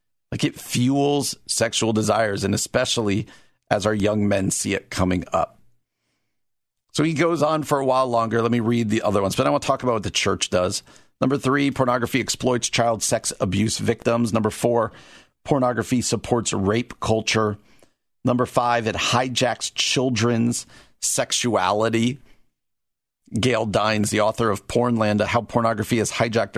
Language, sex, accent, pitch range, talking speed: English, male, American, 105-130 Hz, 155 wpm